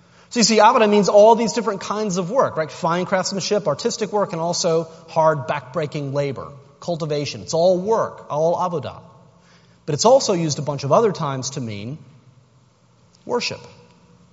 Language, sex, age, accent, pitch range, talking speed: English, male, 30-49, American, 140-205 Hz, 165 wpm